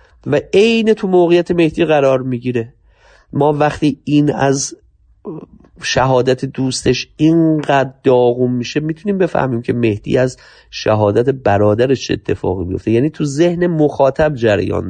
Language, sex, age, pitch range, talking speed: Persian, male, 30-49, 115-150 Hz, 120 wpm